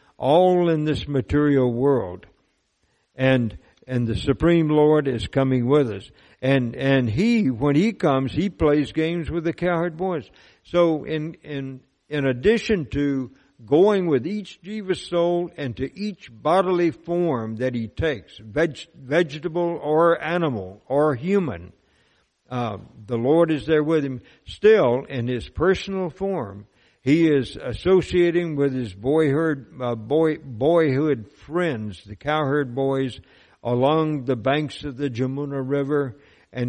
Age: 60-79